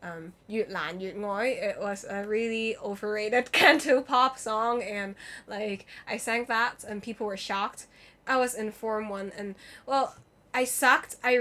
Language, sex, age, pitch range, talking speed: English, female, 10-29, 200-255 Hz, 155 wpm